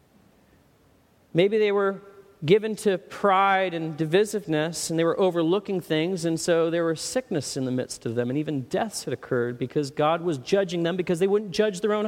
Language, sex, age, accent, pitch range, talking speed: English, male, 40-59, American, 170-235 Hz, 195 wpm